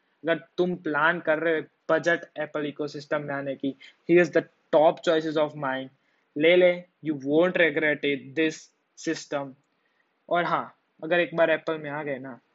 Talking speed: 160 wpm